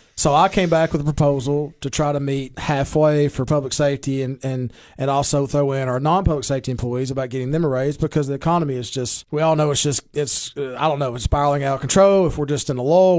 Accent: American